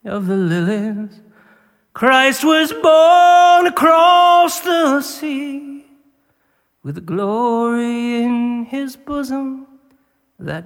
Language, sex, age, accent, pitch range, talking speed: English, male, 30-49, American, 210-285 Hz, 85 wpm